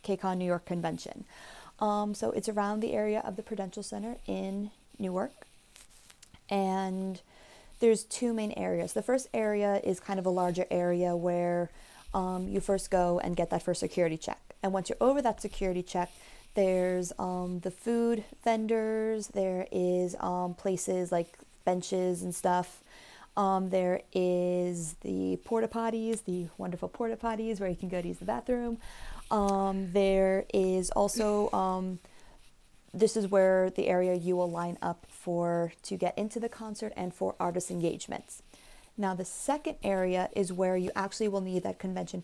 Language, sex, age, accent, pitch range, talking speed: English, female, 20-39, American, 180-210 Hz, 165 wpm